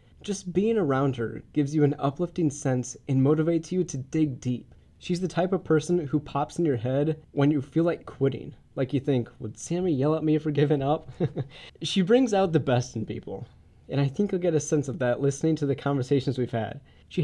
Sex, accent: male, American